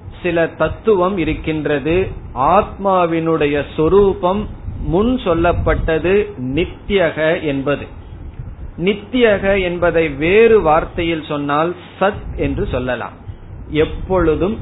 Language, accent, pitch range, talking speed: Tamil, native, 135-180 Hz, 75 wpm